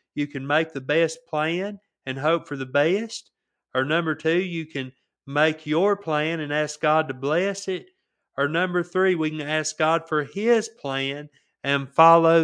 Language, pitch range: English, 145-170 Hz